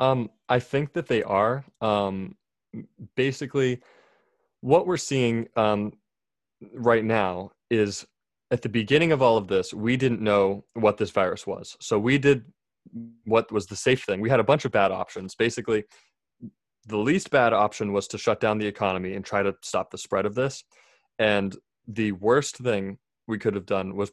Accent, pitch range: American, 100-120 Hz